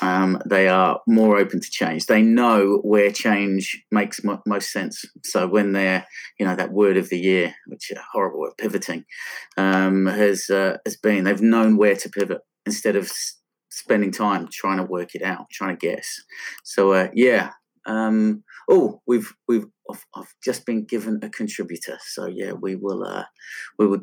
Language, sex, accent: English, male, British